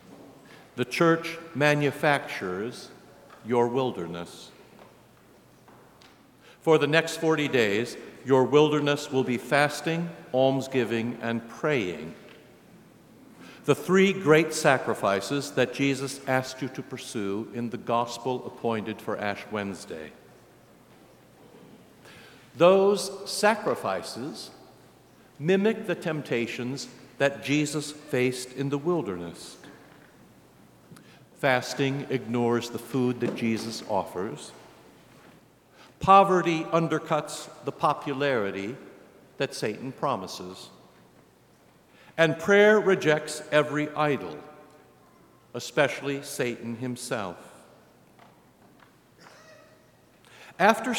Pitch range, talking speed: 125-160 Hz, 80 wpm